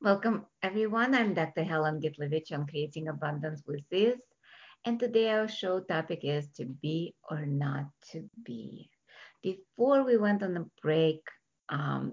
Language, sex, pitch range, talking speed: English, female, 155-215 Hz, 150 wpm